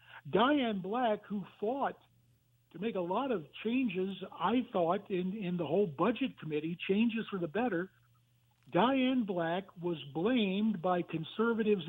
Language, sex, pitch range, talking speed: English, male, 165-215 Hz, 140 wpm